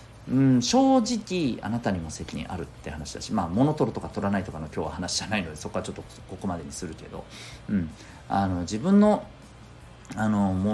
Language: Japanese